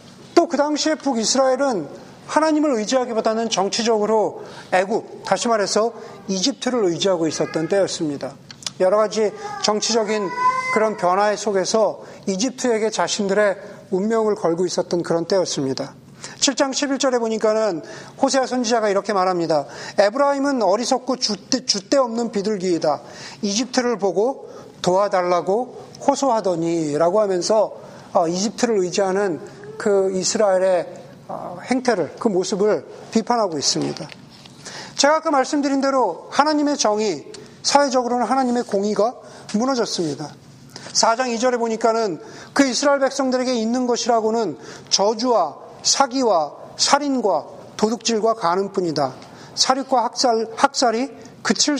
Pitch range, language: 195-260 Hz, Korean